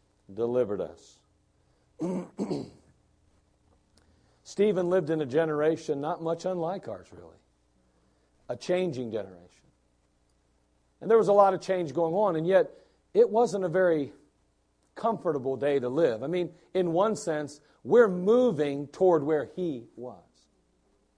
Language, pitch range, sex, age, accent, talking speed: English, 125-170 Hz, male, 50-69, American, 130 wpm